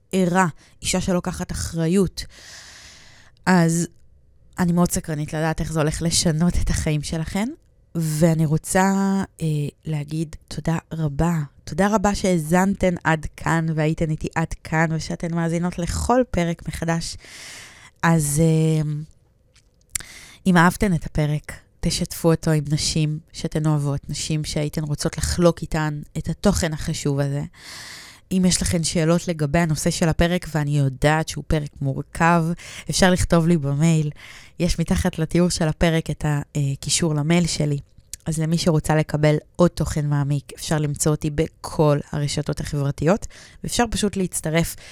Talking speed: 130 wpm